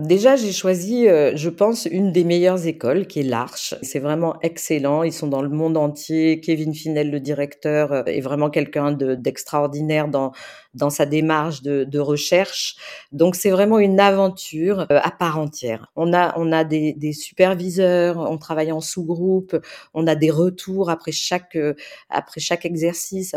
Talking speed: 165 wpm